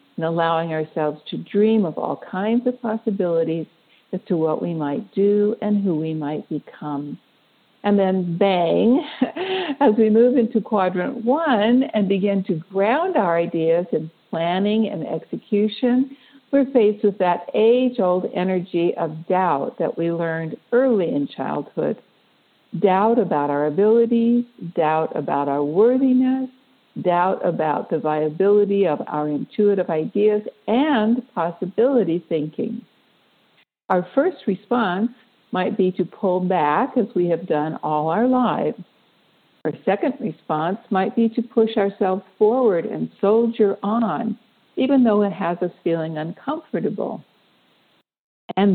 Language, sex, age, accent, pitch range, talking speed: English, female, 60-79, American, 170-235 Hz, 135 wpm